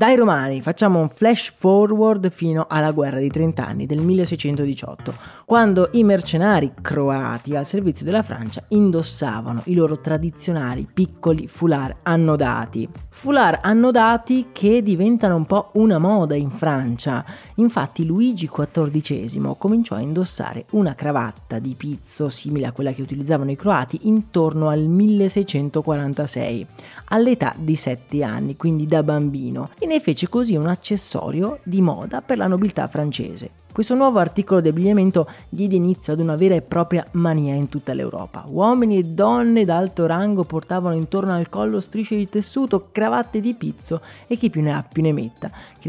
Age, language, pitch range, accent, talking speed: 30-49, Italian, 145-200 Hz, native, 155 wpm